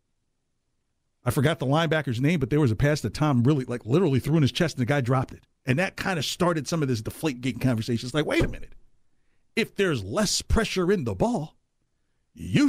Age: 50-69